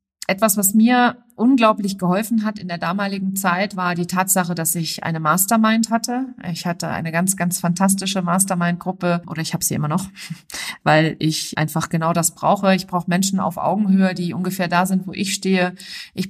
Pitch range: 170-195 Hz